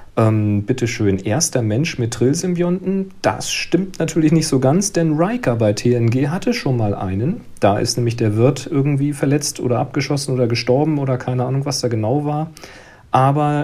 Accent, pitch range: German, 105-150 Hz